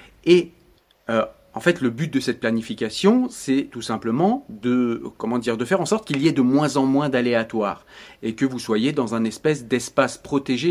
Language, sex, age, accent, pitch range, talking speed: French, male, 40-59, French, 115-150 Hz, 200 wpm